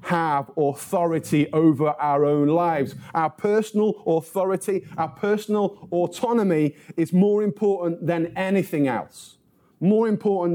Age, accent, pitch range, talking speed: 30-49, British, 160-200 Hz, 115 wpm